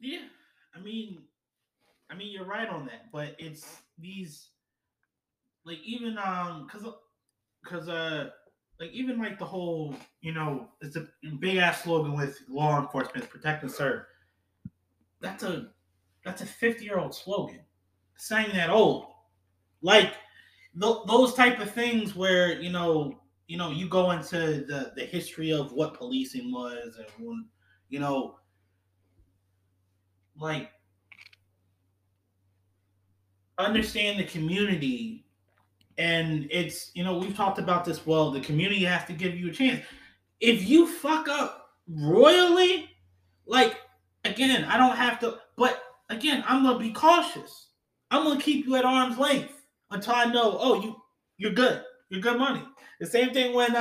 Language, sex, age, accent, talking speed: English, male, 20-39, American, 145 wpm